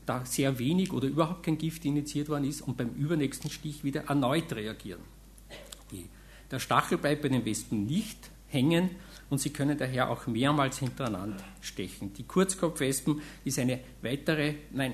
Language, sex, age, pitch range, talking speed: German, male, 50-69, 125-150 Hz, 155 wpm